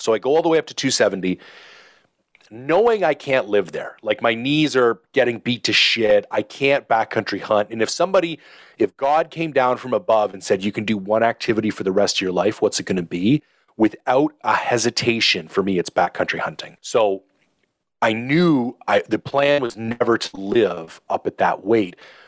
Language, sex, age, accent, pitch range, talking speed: English, male, 30-49, American, 105-145 Hz, 200 wpm